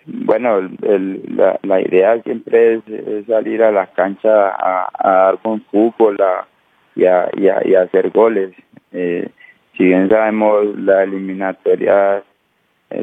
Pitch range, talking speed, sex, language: 100-115 Hz, 155 wpm, male, English